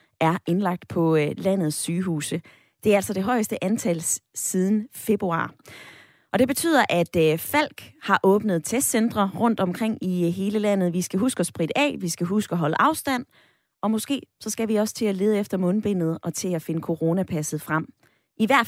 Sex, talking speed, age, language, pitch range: female, 185 wpm, 20-39, Danish, 175-235 Hz